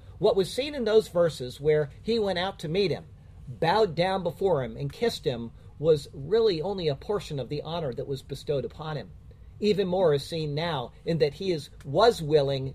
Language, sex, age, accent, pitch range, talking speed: English, male, 50-69, American, 140-195 Hz, 205 wpm